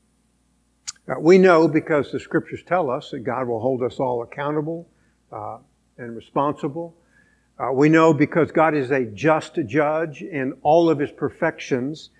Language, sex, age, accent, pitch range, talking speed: English, male, 60-79, American, 125-165 Hz, 155 wpm